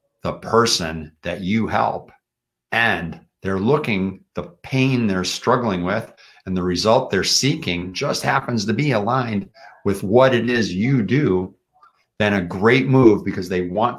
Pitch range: 85-120 Hz